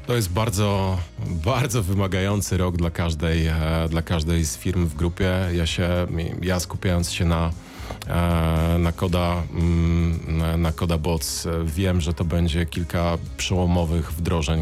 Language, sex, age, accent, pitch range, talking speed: Polish, male, 30-49, native, 80-90 Hz, 125 wpm